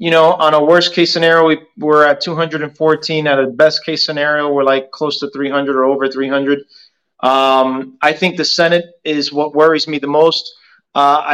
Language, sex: English, male